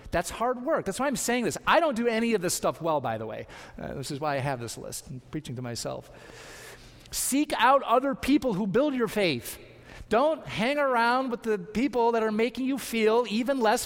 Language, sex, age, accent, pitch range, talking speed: English, male, 40-59, American, 155-220 Hz, 225 wpm